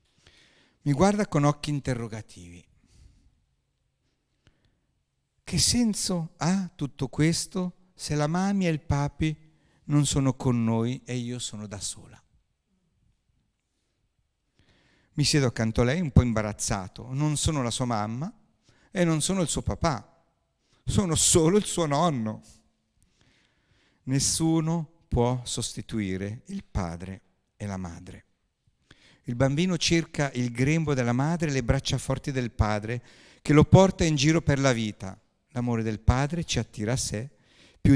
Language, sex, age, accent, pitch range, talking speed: Italian, male, 50-69, native, 120-160 Hz, 135 wpm